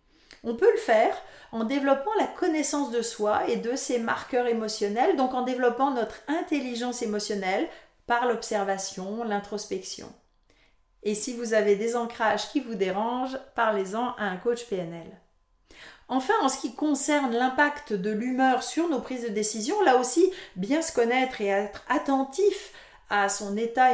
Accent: French